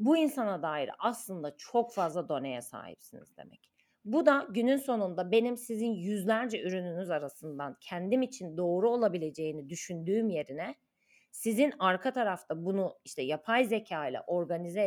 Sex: female